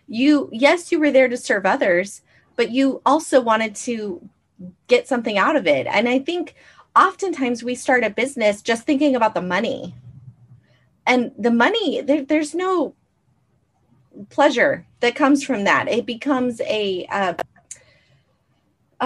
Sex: female